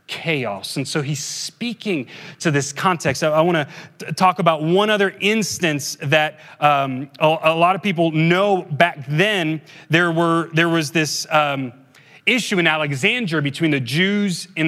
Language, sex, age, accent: English, male, 30-49, American